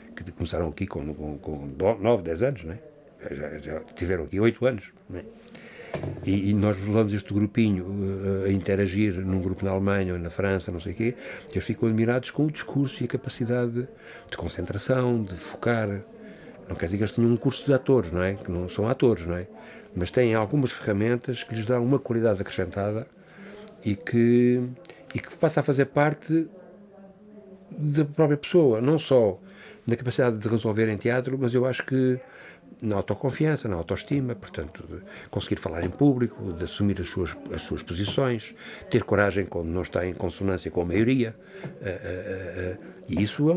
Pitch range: 95-145 Hz